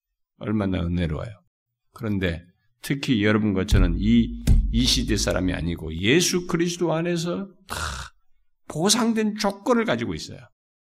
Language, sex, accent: Korean, male, native